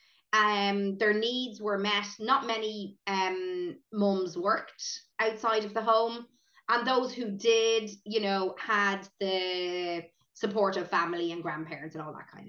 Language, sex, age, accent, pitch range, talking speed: English, female, 20-39, Irish, 175-225 Hz, 150 wpm